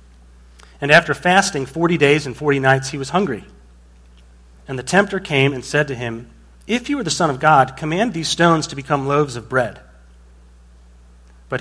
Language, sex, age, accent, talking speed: English, male, 30-49, American, 180 wpm